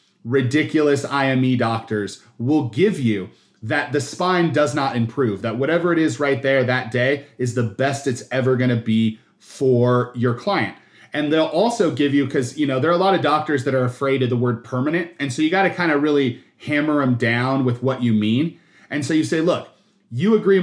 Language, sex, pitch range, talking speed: English, male, 125-160 Hz, 205 wpm